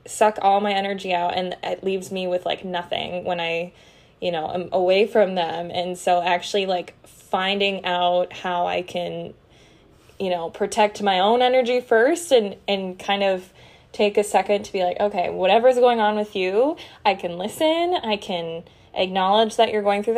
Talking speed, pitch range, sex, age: 185 wpm, 180-215 Hz, female, 20-39